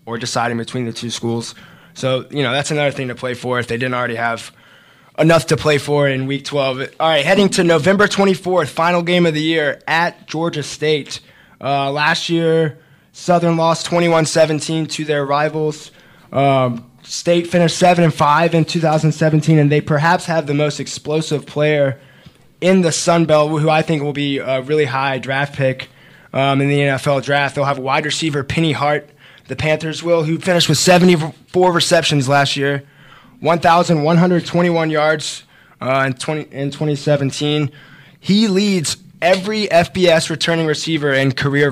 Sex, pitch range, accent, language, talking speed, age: male, 135-160 Hz, American, English, 165 wpm, 20-39